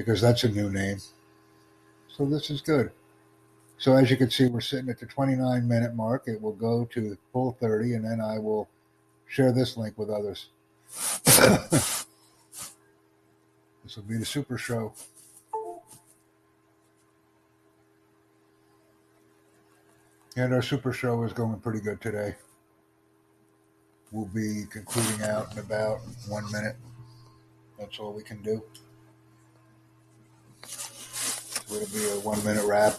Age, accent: 60-79, American